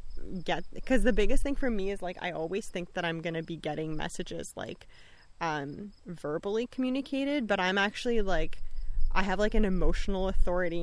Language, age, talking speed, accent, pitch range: English, 20-39, 185 wpm, American, 165-210 Hz